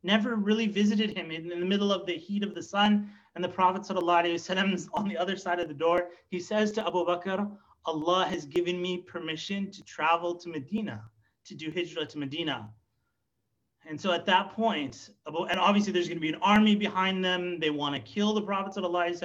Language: English